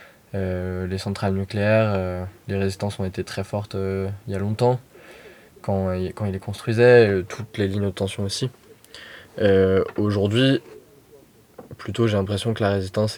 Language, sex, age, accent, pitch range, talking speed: French, male, 20-39, French, 95-110 Hz, 170 wpm